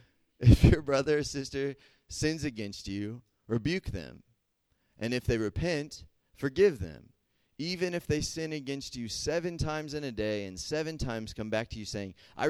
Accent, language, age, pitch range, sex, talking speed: American, English, 30-49, 100-135 Hz, male, 175 wpm